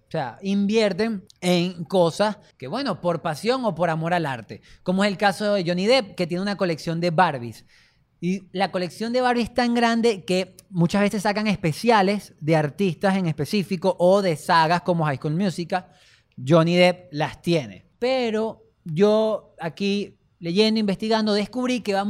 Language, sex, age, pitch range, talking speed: Spanish, male, 20-39, 165-210 Hz, 170 wpm